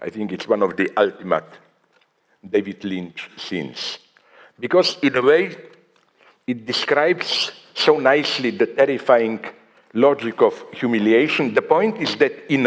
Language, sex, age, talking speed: English, male, 60-79, 135 wpm